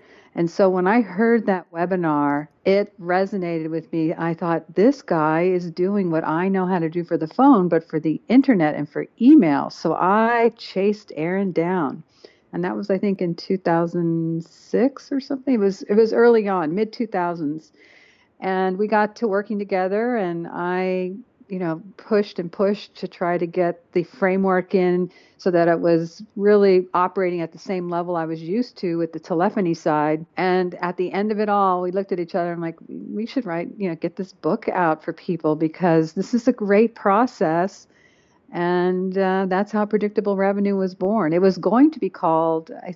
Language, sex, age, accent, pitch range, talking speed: English, female, 50-69, American, 165-200 Hz, 195 wpm